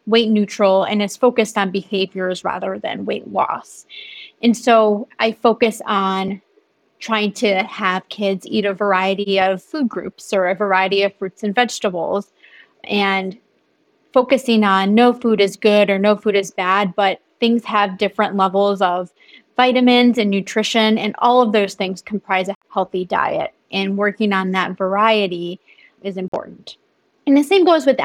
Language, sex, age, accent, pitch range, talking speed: English, female, 30-49, American, 195-225 Hz, 160 wpm